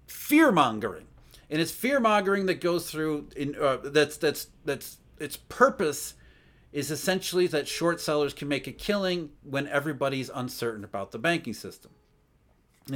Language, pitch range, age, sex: English, 130-185 Hz, 40-59, male